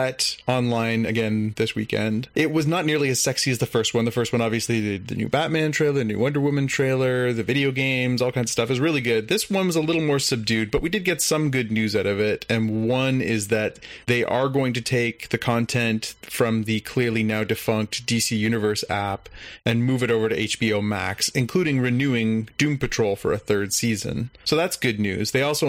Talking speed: 220 wpm